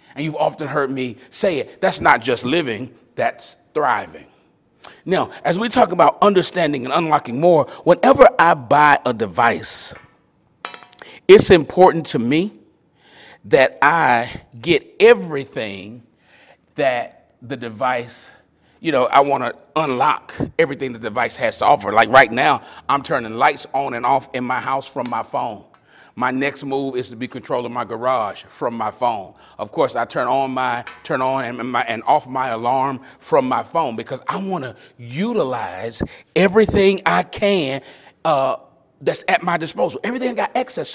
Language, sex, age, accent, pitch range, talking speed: English, male, 40-59, American, 130-180 Hz, 160 wpm